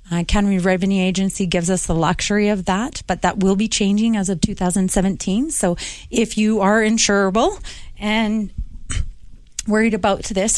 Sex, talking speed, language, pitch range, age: female, 155 wpm, English, 180-210 Hz, 30-49